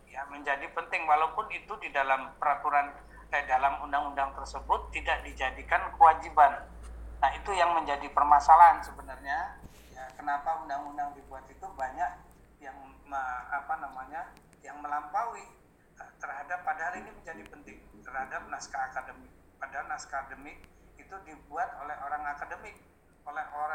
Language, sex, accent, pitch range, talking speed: English, male, Indonesian, 140-165 Hz, 125 wpm